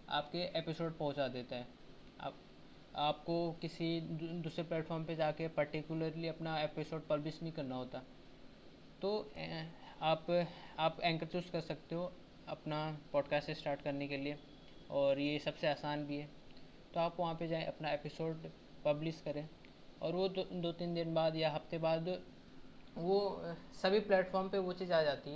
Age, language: 20-39, Hindi